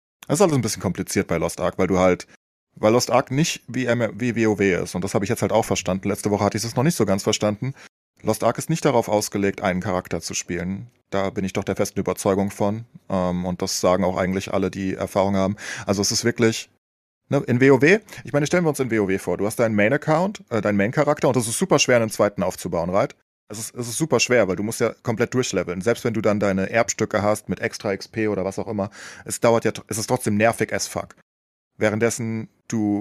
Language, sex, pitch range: German, male, 95-115 Hz